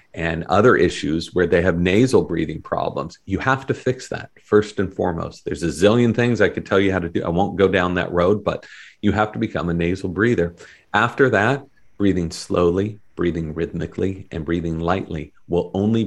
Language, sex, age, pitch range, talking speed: English, male, 40-59, 85-100 Hz, 200 wpm